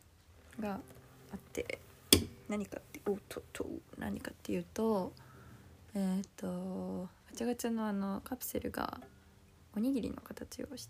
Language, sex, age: Japanese, female, 20-39